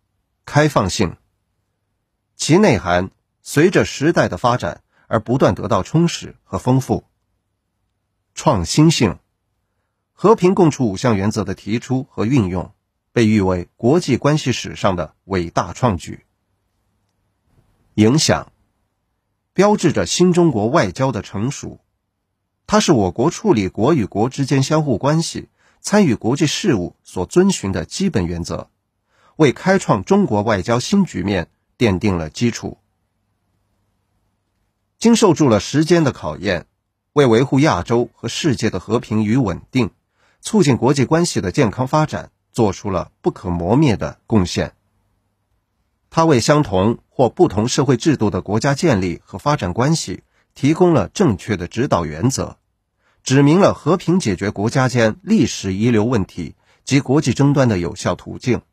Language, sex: Chinese, male